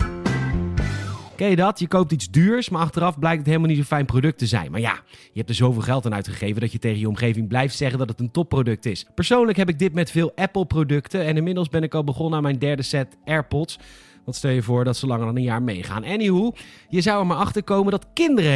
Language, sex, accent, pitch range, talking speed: Dutch, male, Dutch, 125-175 Hz, 250 wpm